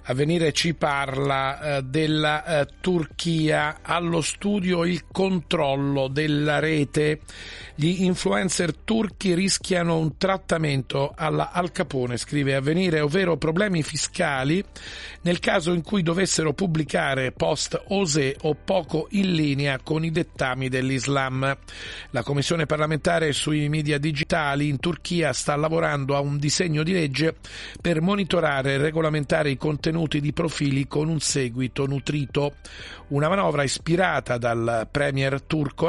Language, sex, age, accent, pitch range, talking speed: Italian, male, 40-59, native, 130-165 Hz, 125 wpm